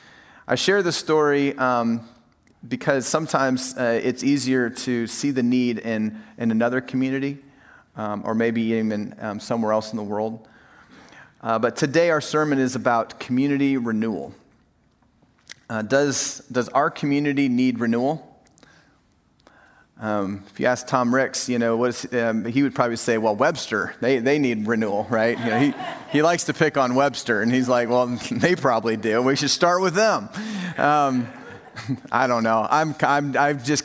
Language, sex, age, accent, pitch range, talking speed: English, male, 30-49, American, 120-145 Hz, 170 wpm